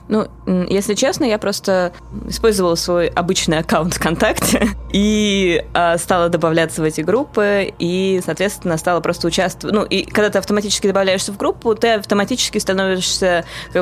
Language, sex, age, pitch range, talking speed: Russian, female, 20-39, 155-195 Hz, 150 wpm